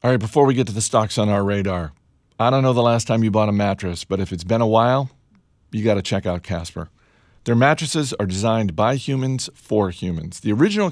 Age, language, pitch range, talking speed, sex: 50-69, English, 95-125 Hz, 225 wpm, male